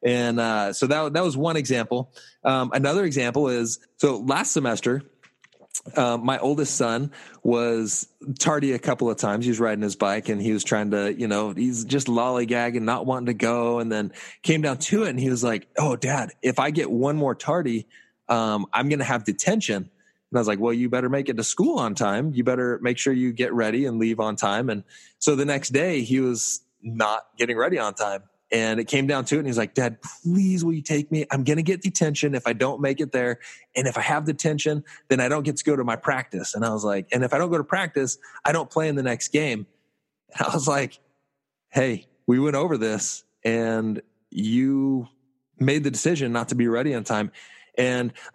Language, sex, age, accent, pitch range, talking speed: English, male, 20-39, American, 115-145 Hz, 225 wpm